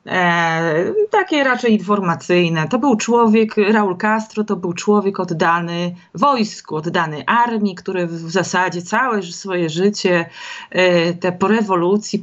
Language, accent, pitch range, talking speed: Polish, native, 170-220 Hz, 125 wpm